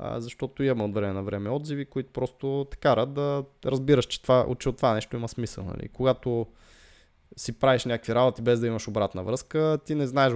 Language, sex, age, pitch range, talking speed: Bulgarian, male, 20-39, 110-140 Hz, 205 wpm